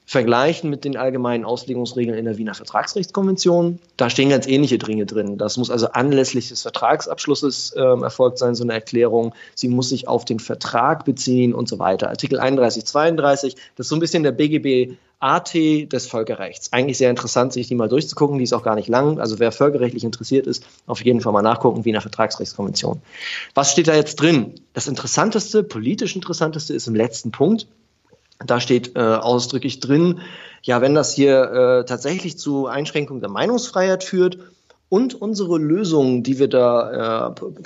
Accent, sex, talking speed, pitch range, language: German, male, 175 wpm, 120-145 Hz, German